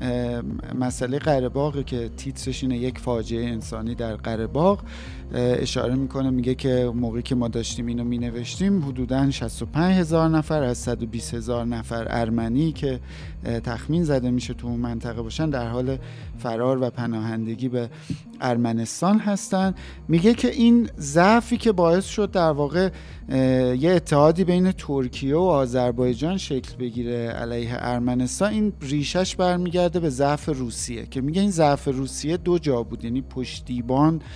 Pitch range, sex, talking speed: 120-160 Hz, male, 140 wpm